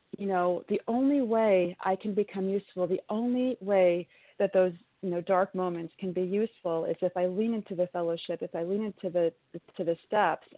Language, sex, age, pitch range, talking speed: English, female, 40-59, 185-225 Hz, 205 wpm